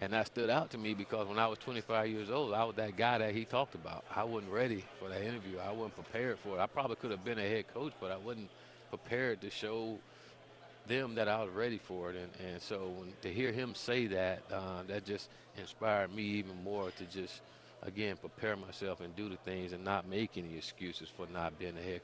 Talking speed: 240 wpm